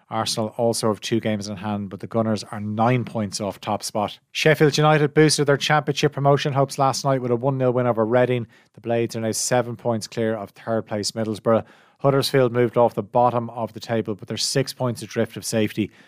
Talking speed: 215 wpm